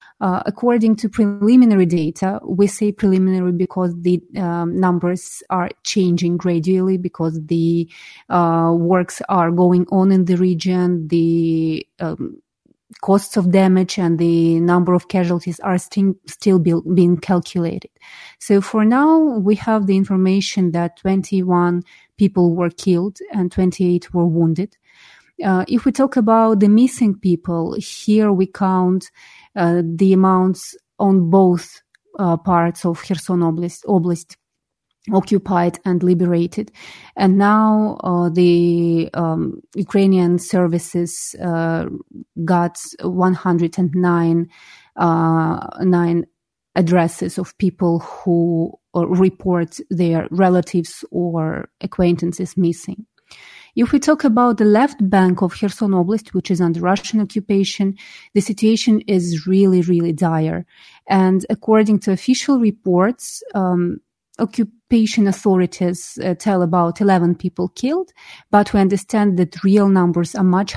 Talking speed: 120 wpm